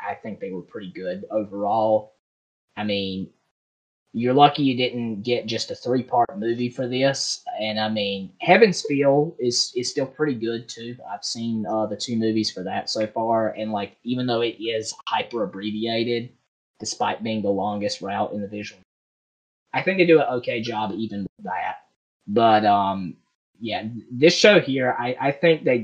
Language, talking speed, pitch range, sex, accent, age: English, 180 wpm, 105-150 Hz, male, American, 20-39